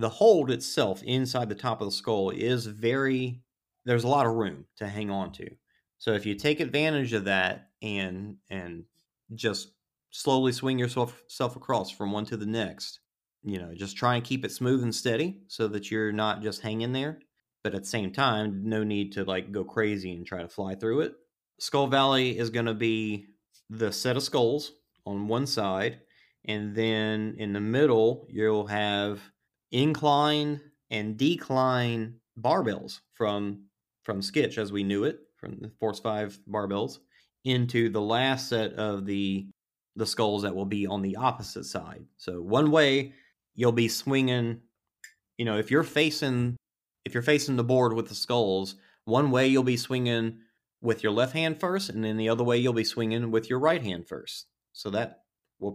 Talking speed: 180 wpm